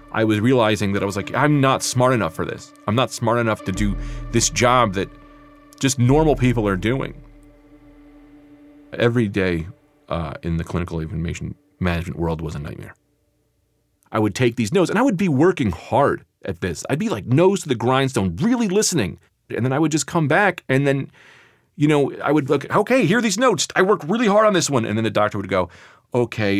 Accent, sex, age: American, male, 40-59